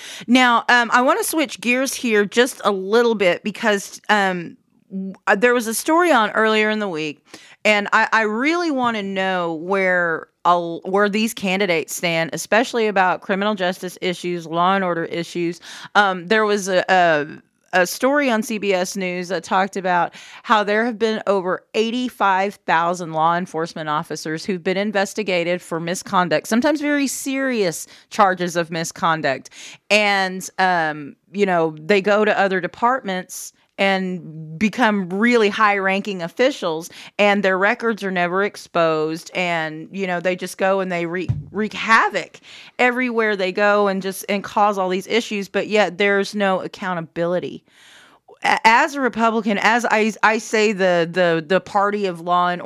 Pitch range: 180-220 Hz